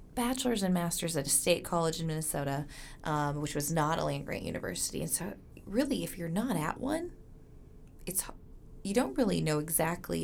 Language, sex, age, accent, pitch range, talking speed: English, female, 20-39, American, 145-180 Hz, 180 wpm